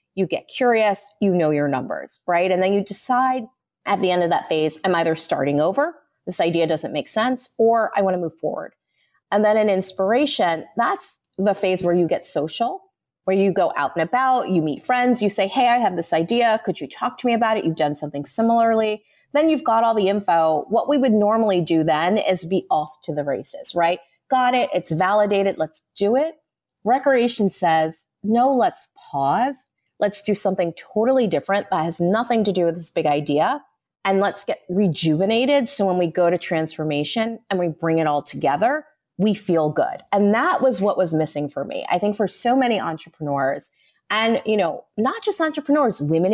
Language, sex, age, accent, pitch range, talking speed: English, female, 30-49, American, 165-240 Hz, 200 wpm